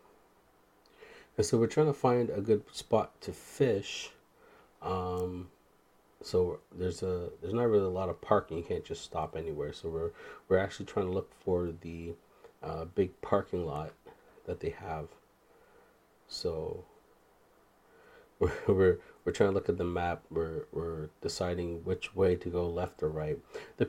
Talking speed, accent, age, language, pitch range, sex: 160 wpm, American, 30-49, English, 85-115 Hz, male